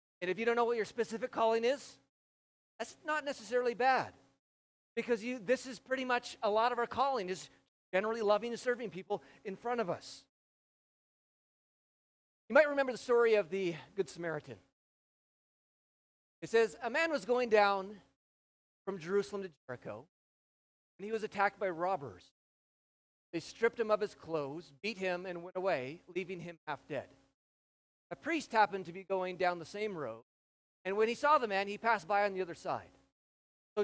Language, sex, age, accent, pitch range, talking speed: English, male, 40-59, American, 170-230 Hz, 175 wpm